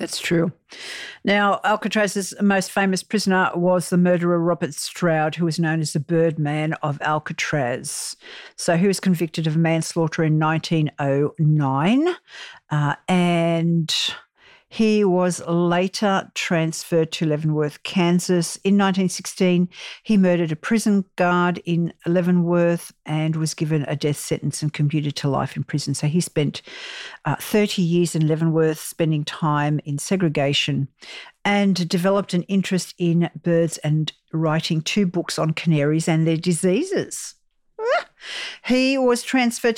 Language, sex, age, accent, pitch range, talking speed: English, female, 50-69, Australian, 160-195 Hz, 135 wpm